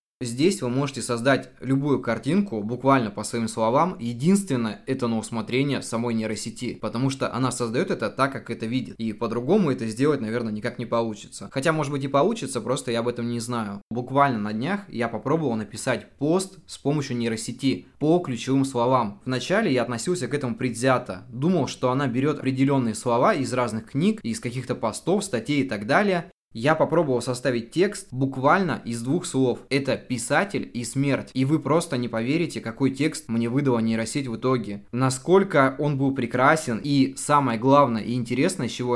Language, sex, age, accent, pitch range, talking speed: Russian, male, 20-39, native, 120-140 Hz, 175 wpm